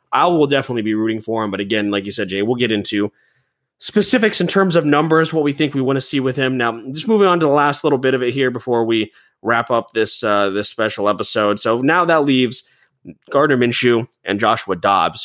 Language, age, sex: English, 20-39, male